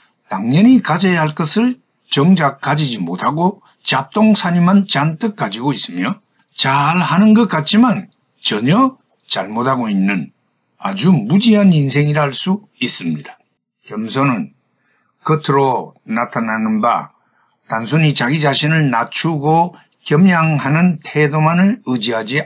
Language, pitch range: Korean, 135-195 Hz